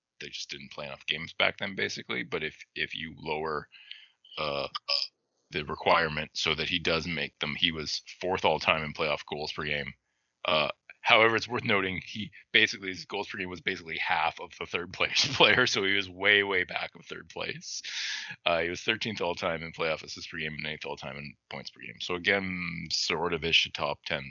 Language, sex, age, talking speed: English, male, 30-49, 205 wpm